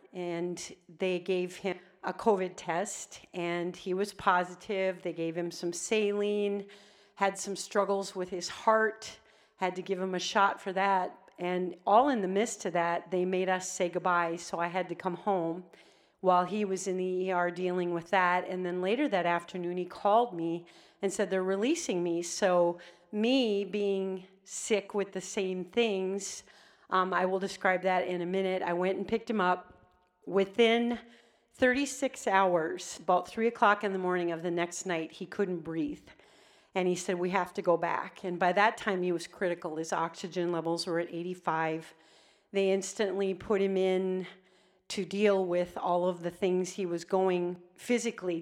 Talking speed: 180 wpm